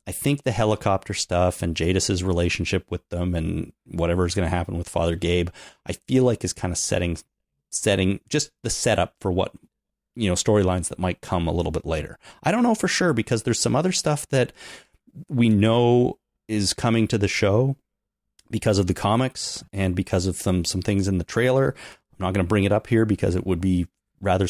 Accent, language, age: American, English, 30-49